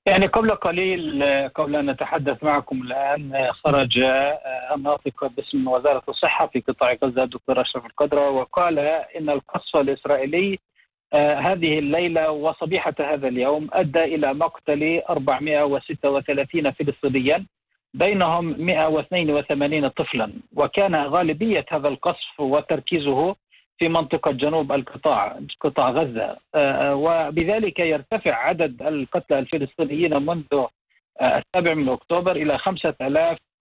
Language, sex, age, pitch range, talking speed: English, male, 50-69, 145-170 Hz, 105 wpm